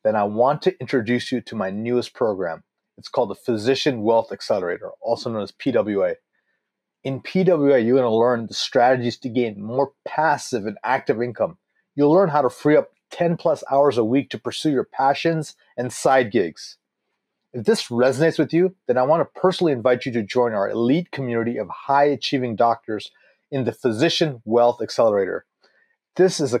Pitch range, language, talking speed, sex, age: 120-155 Hz, English, 180 wpm, male, 30-49